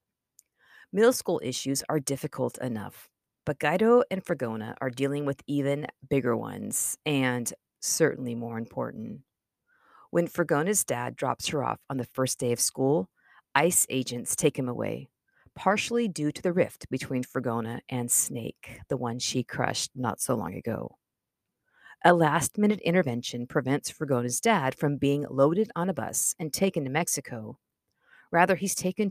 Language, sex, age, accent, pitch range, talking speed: English, female, 40-59, American, 130-175 Hz, 150 wpm